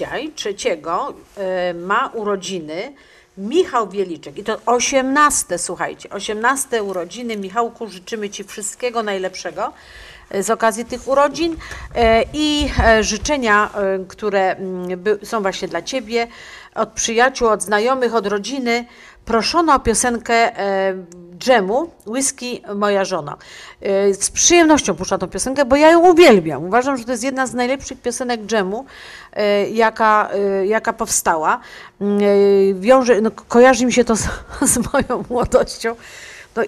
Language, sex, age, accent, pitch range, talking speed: Polish, female, 50-69, native, 195-245 Hz, 130 wpm